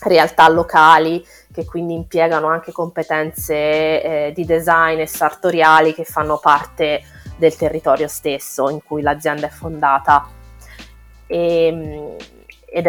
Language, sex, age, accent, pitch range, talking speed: Italian, female, 20-39, native, 150-170 Hz, 110 wpm